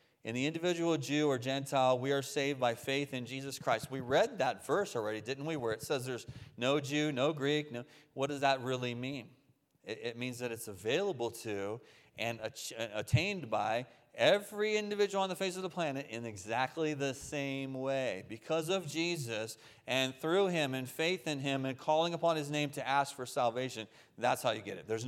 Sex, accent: male, American